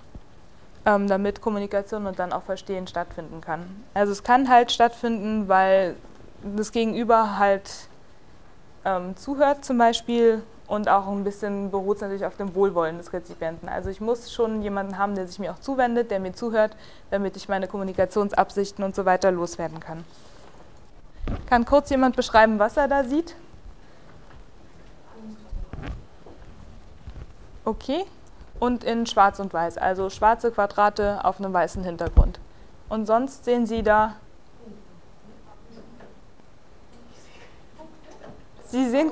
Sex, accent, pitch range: female, German, 190-240 Hz